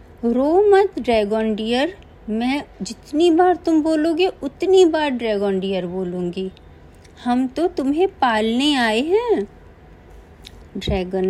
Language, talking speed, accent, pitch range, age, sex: Hindi, 125 wpm, native, 200-315 Hz, 50-69, female